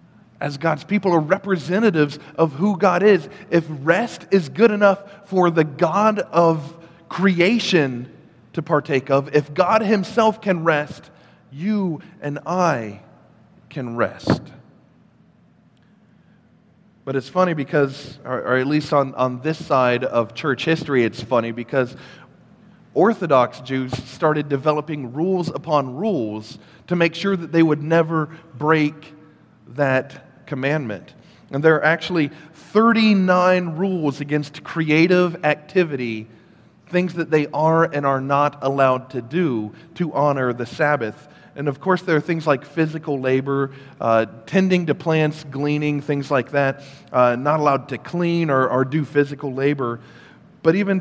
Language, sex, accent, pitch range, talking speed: English, male, American, 140-175 Hz, 140 wpm